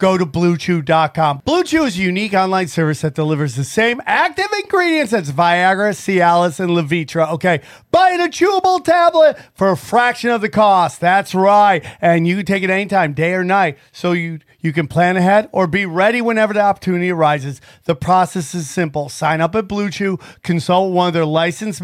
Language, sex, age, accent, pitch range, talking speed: English, male, 40-59, American, 155-210 Hz, 185 wpm